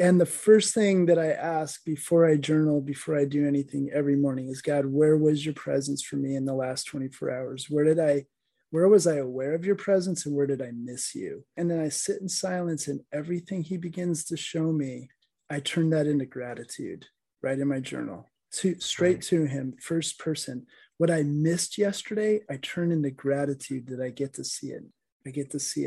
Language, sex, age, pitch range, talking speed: English, male, 30-49, 140-170 Hz, 210 wpm